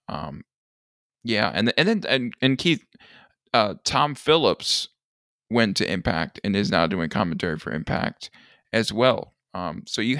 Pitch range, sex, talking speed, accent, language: 110-135 Hz, male, 155 wpm, American, English